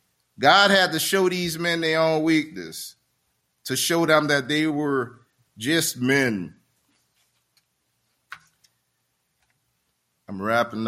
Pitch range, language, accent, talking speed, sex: 105-155 Hz, English, American, 105 wpm, male